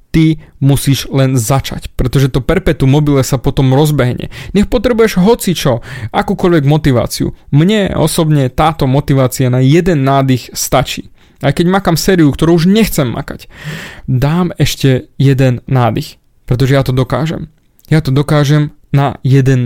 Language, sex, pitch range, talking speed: Slovak, male, 130-180 Hz, 135 wpm